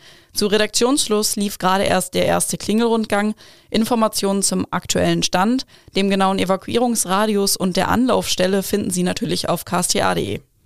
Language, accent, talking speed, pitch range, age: German, German, 130 wpm, 185-215 Hz, 20-39